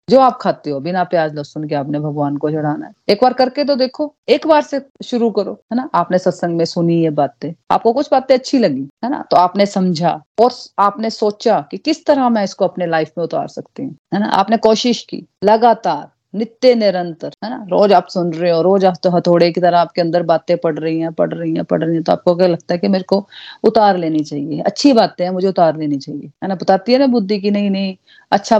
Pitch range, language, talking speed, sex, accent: 170-230 Hz, Hindi, 240 wpm, female, native